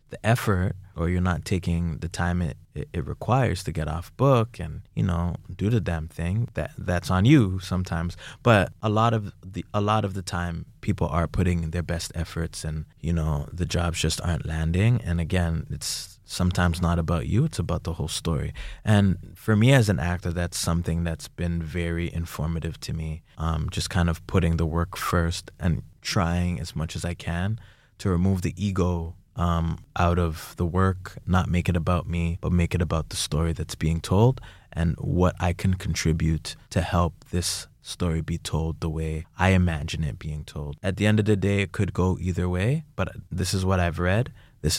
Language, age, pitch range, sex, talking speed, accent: English, 20-39, 85-95 Hz, male, 200 wpm, American